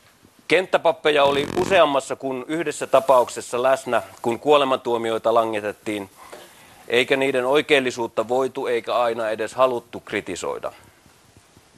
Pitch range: 115-135 Hz